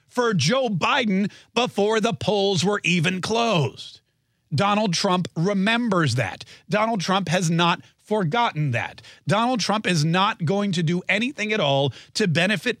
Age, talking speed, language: 40-59, 145 wpm, English